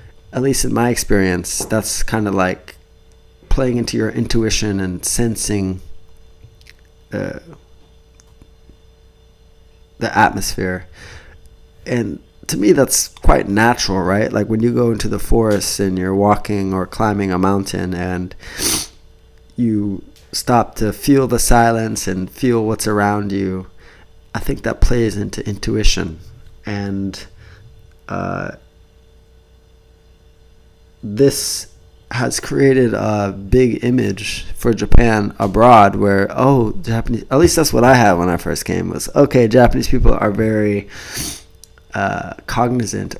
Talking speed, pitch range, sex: 125 wpm, 90-115 Hz, male